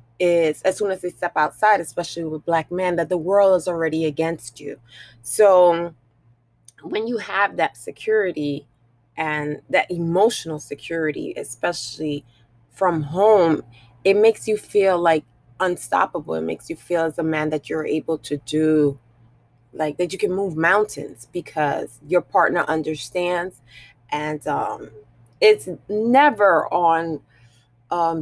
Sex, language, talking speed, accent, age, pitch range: female, English, 140 wpm, American, 20-39, 150-195 Hz